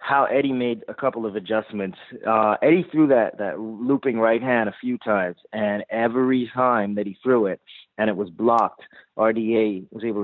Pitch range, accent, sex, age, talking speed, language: 105-125 Hz, American, male, 30-49, 190 wpm, English